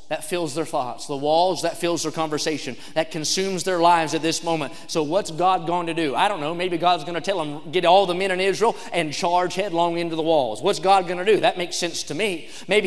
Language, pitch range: English, 195-275 Hz